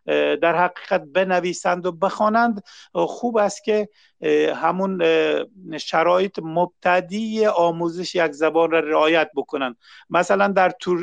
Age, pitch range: 50-69, 160-200 Hz